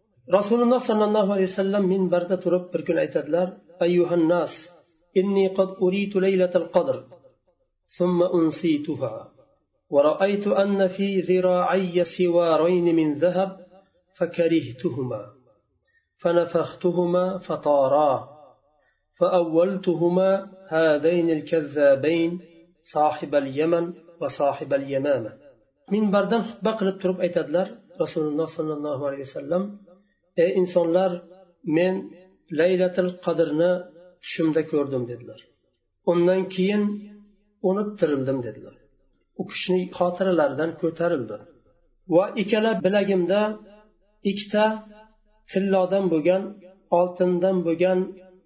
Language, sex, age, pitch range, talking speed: Russian, male, 40-59, 165-195 Hz, 75 wpm